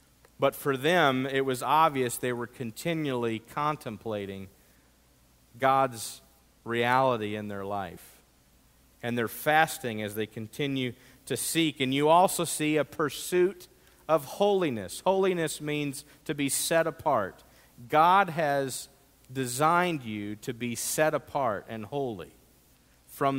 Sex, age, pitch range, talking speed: male, 50-69, 125-160 Hz, 125 wpm